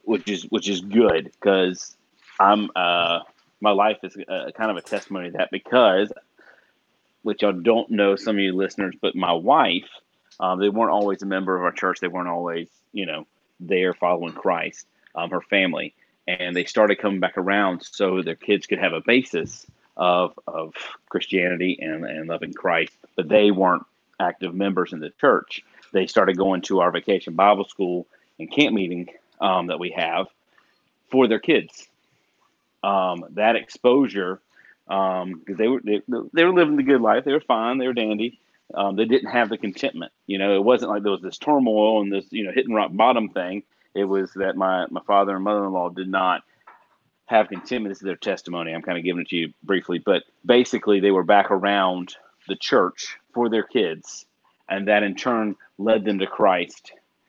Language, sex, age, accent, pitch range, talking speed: English, male, 30-49, American, 90-105 Hz, 190 wpm